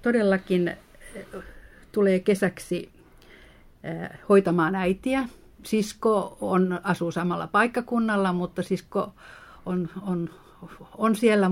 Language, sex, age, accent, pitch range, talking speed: Finnish, female, 50-69, native, 175-220 Hz, 85 wpm